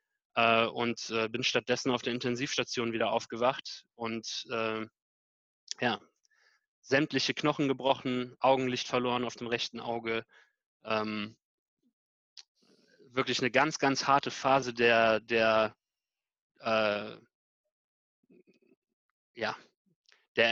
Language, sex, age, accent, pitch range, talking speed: German, male, 20-39, German, 120-150 Hz, 85 wpm